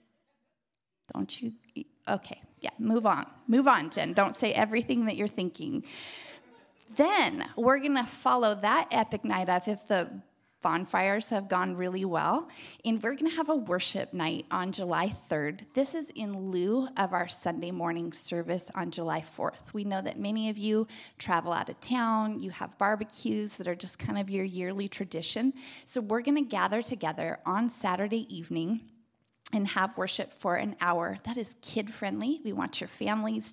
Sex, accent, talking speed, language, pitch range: female, American, 170 wpm, English, 180-230 Hz